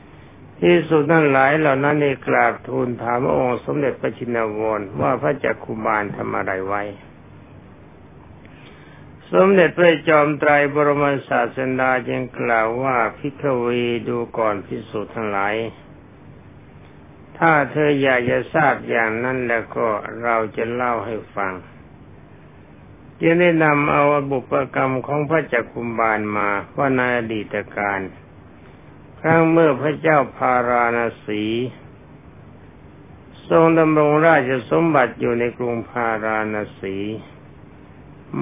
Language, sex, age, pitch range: Thai, male, 60-79, 115-150 Hz